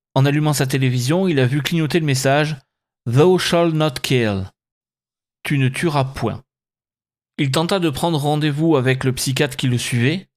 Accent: French